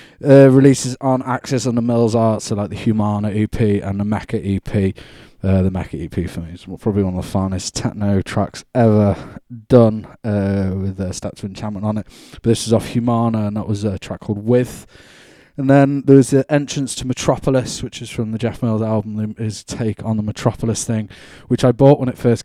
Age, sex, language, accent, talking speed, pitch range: 20-39, male, English, British, 215 wpm, 105-125 Hz